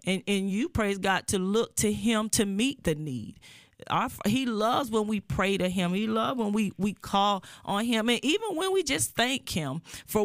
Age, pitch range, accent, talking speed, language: 40-59, 180-215 Hz, American, 215 wpm, English